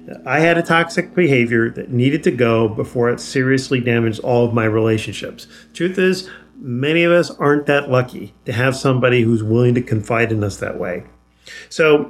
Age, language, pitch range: 40-59, English, 115-145 Hz